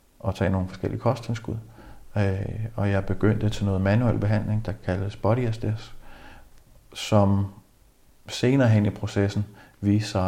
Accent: native